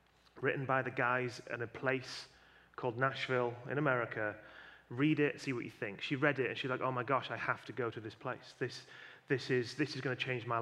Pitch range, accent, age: 120-135 Hz, British, 30-49